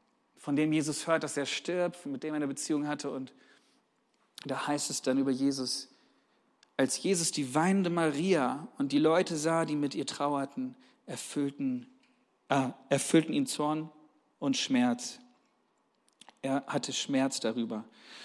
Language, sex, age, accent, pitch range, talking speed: German, male, 40-59, German, 140-210 Hz, 145 wpm